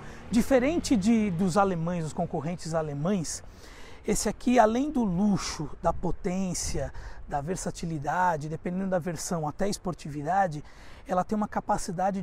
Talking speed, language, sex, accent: 130 wpm, Portuguese, male, Brazilian